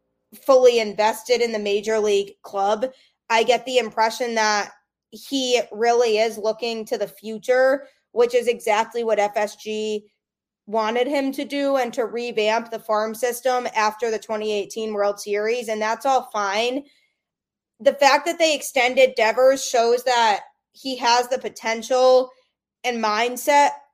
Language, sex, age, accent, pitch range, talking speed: English, female, 20-39, American, 215-255 Hz, 145 wpm